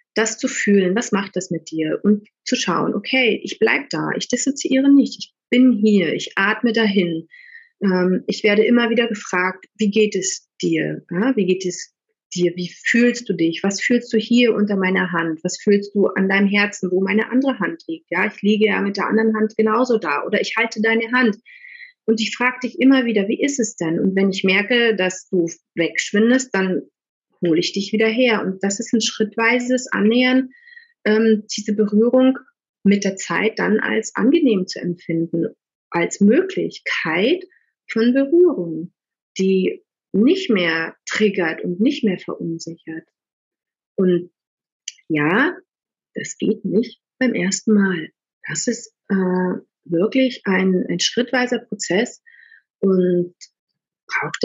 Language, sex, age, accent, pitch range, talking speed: German, female, 30-49, German, 185-245 Hz, 160 wpm